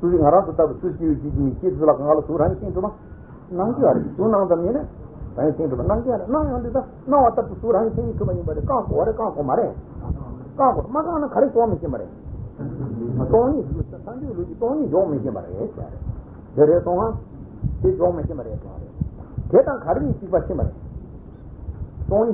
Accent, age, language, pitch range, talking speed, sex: Indian, 60-79, Italian, 155-255 Hz, 115 wpm, male